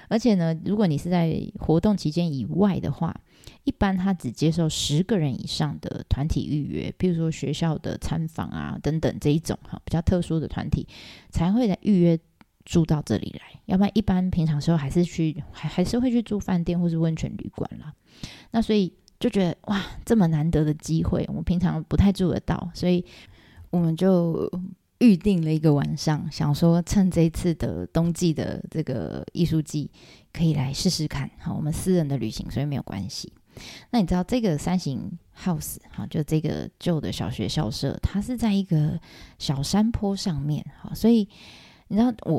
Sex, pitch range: female, 155-190 Hz